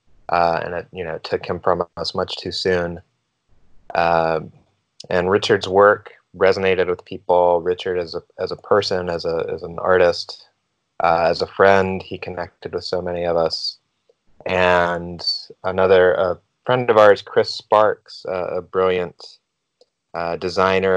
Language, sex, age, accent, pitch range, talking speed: English, male, 20-39, American, 85-115 Hz, 155 wpm